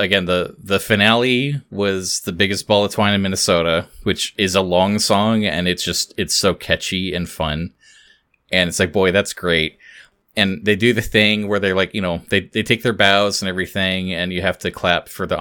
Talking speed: 215 wpm